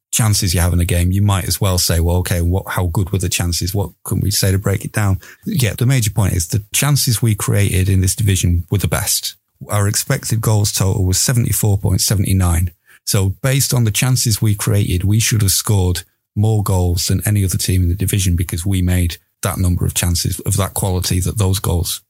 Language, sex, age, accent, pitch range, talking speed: English, male, 30-49, British, 95-115 Hz, 220 wpm